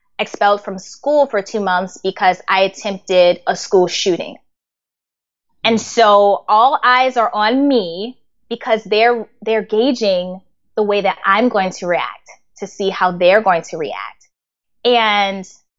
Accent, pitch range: American, 205-270 Hz